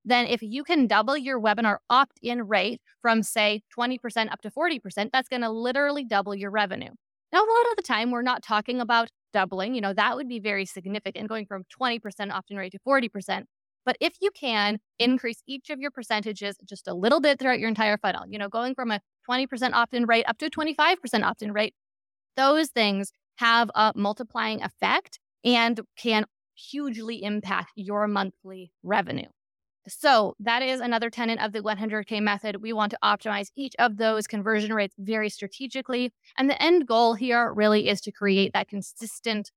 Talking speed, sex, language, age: 185 wpm, female, English, 20-39